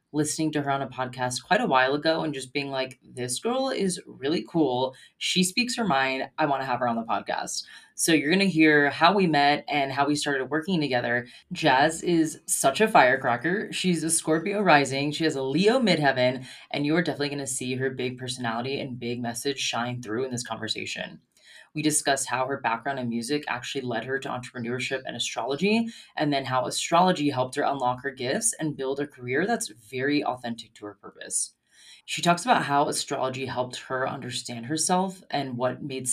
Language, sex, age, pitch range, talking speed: English, female, 20-39, 125-160 Hz, 200 wpm